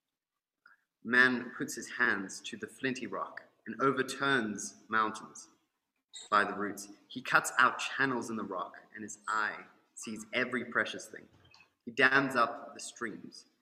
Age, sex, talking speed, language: 30-49, male, 145 wpm, English